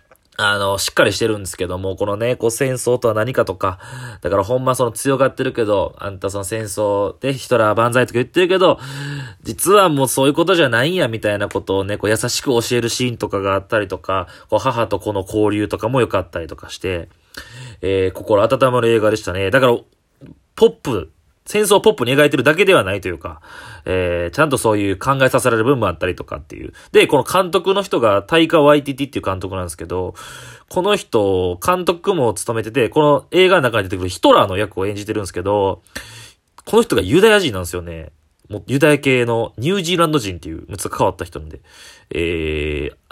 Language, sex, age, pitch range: Japanese, male, 20-39, 95-135 Hz